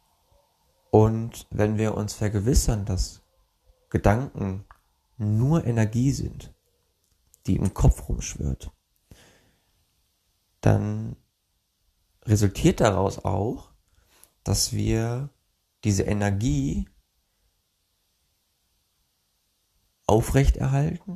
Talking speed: 65 wpm